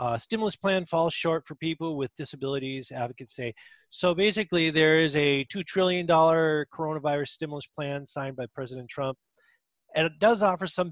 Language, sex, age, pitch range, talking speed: English, male, 30-49, 135-165 Hz, 165 wpm